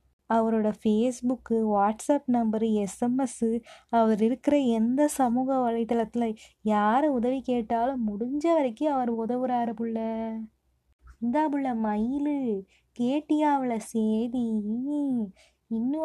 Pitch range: 225-265 Hz